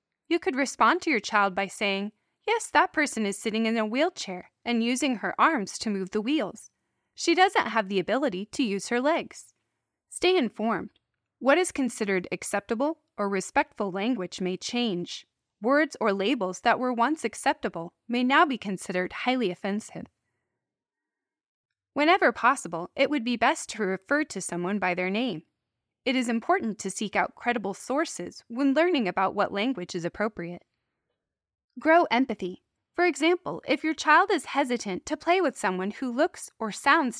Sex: female